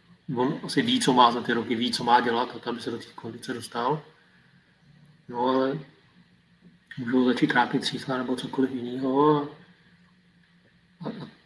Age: 30-49